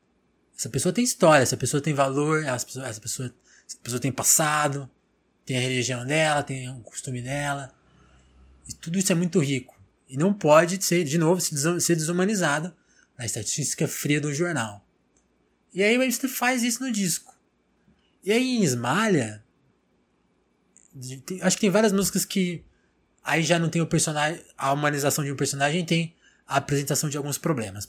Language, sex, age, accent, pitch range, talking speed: Portuguese, male, 20-39, Brazilian, 130-175 Hz, 160 wpm